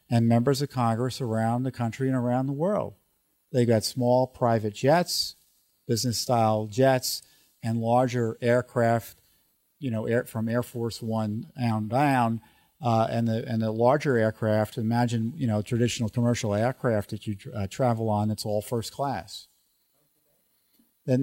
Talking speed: 145 wpm